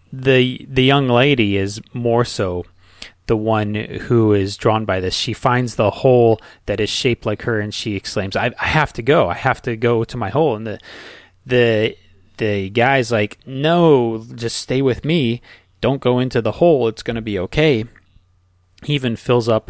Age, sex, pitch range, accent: 30-49, male, 100-120 Hz, American